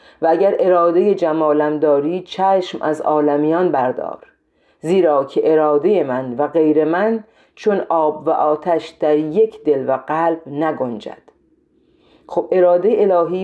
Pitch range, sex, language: 155-200 Hz, female, Persian